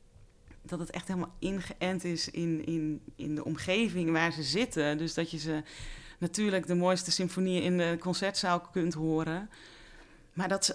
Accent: Dutch